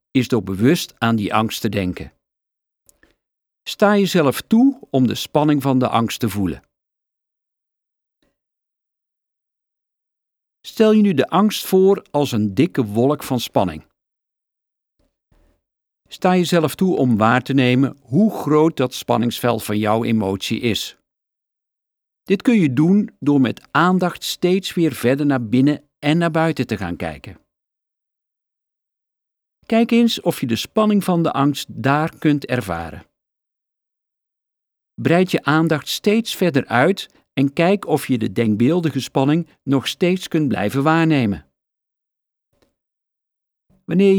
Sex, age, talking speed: male, 50-69, 130 wpm